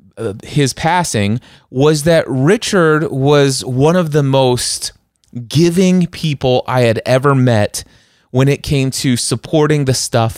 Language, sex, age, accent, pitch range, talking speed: English, male, 30-49, American, 110-150 Hz, 135 wpm